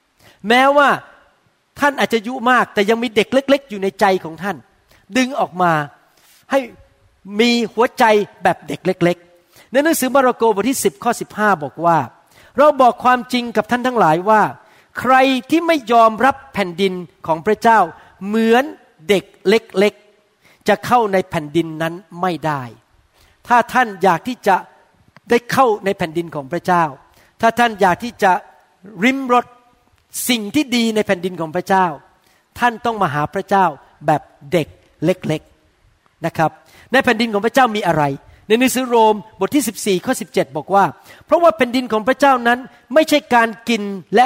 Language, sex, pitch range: Thai, male, 170-235 Hz